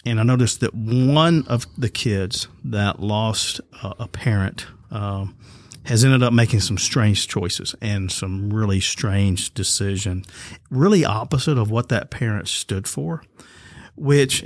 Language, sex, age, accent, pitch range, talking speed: English, male, 50-69, American, 100-125 Hz, 145 wpm